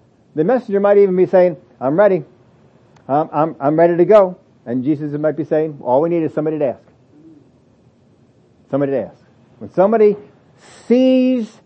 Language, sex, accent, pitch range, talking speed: English, male, American, 145-190 Hz, 165 wpm